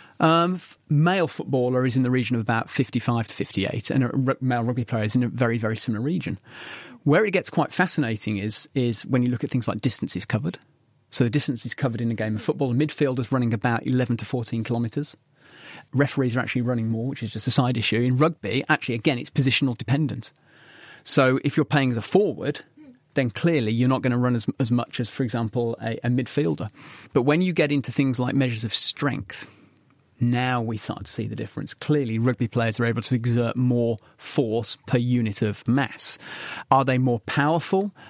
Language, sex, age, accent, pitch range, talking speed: English, male, 30-49, British, 120-145 Hz, 215 wpm